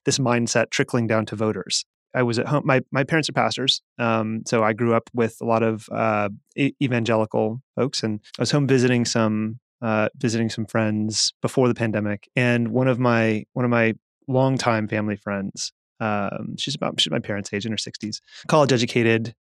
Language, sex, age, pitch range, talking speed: English, male, 30-49, 110-130 Hz, 190 wpm